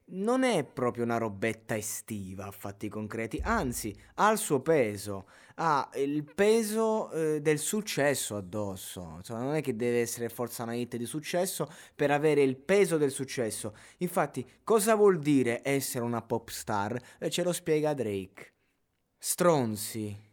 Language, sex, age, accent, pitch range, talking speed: Italian, male, 20-39, native, 105-145 Hz, 150 wpm